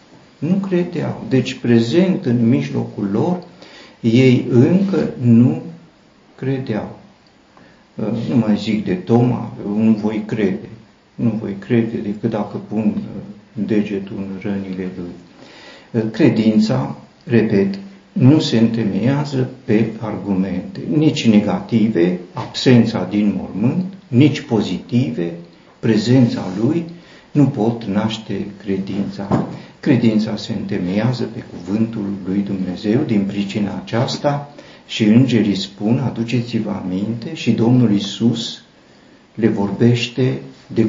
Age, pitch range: 50-69, 100-120 Hz